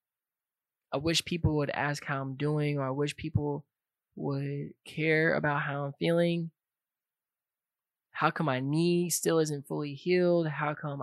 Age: 20-39